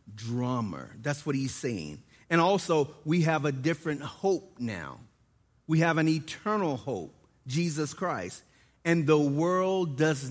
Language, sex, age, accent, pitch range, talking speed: English, male, 40-59, American, 145-185 Hz, 140 wpm